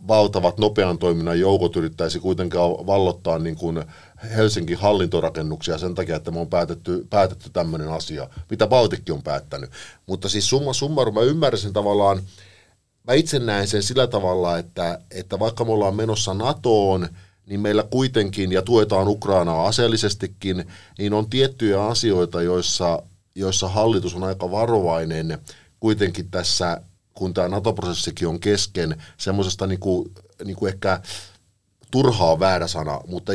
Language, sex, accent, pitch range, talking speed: Finnish, male, native, 85-105 Hz, 135 wpm